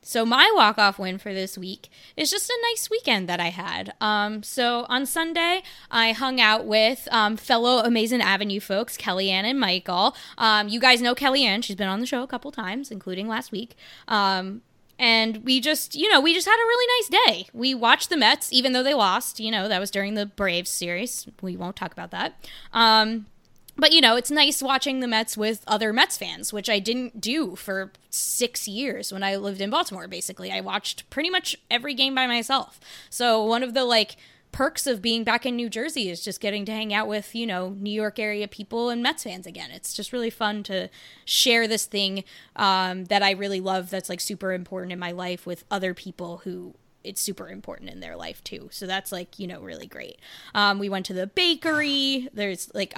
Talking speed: 215 wpm